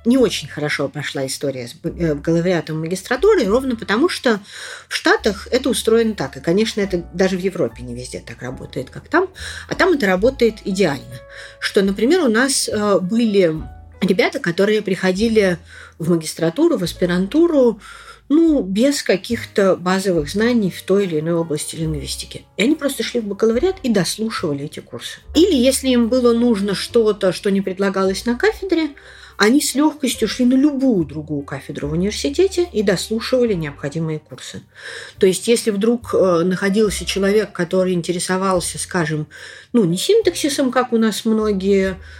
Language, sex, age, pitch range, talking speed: Russian, female, 40-59, 165-235 Hz, 155 wpm